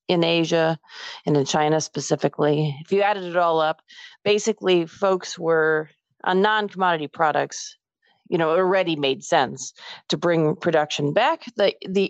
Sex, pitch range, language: female, 150-190 Hz, English